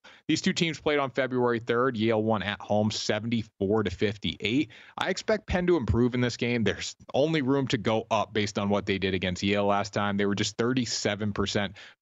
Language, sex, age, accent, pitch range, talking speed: English, male, 30-49, American, 100-120 Hz, 205 wpm